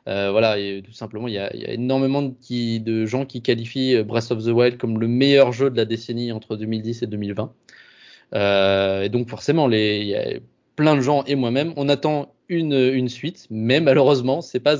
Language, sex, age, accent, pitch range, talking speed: French, male, 20-39, French, 110-135 Hz, 215 wpm